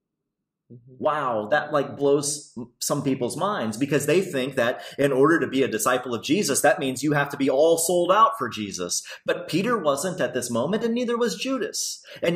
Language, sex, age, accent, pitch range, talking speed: English, male, 30-49, American, 120-175 Hz, 200 wpm